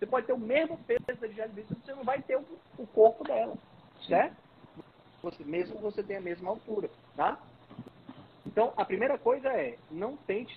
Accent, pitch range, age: Brazilian, 165-225 Hz, 40-59